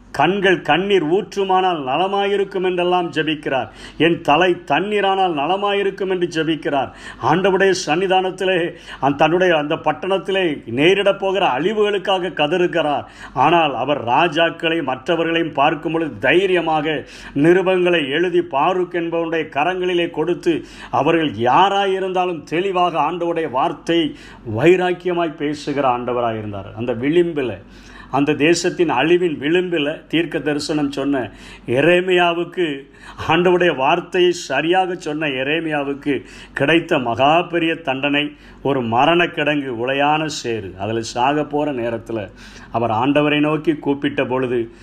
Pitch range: 140-180 Hz